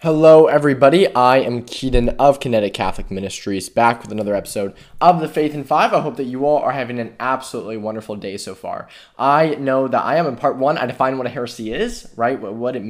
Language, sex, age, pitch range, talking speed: English, male, 20-39, 110-150 Hz, 225 wpm